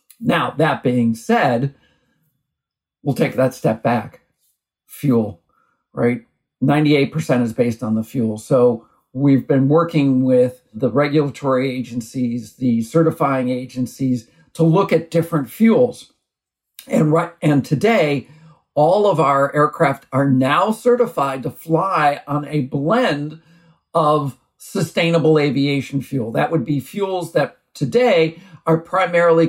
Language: English